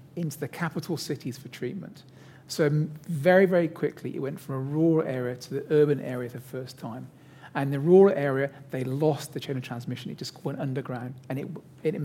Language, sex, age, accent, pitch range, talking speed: English, male, 40-59, British, 135-160 Hz, 210 wpm